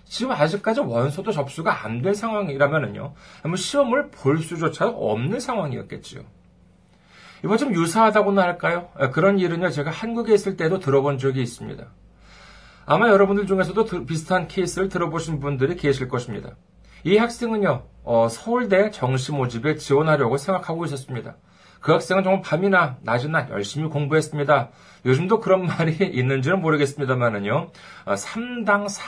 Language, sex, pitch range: Korean, male, 135-195 Hz